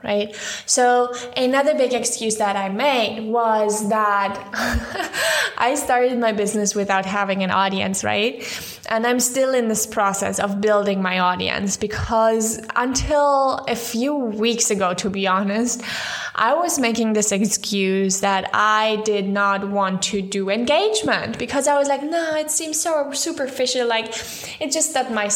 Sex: female